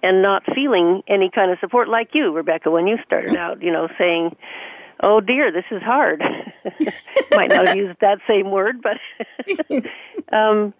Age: 50-69